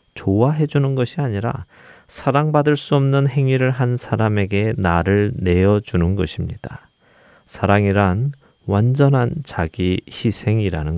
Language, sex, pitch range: Korean, male, 95-130 Hz